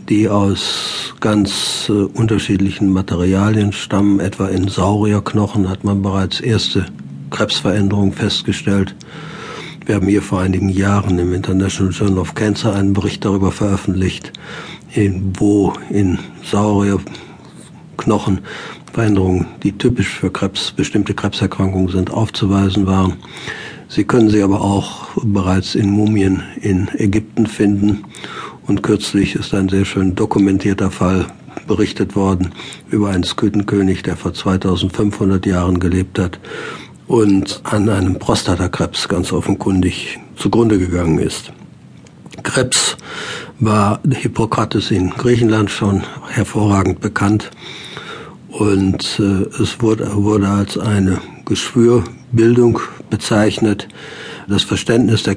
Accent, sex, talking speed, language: German, male, 110 wpm, German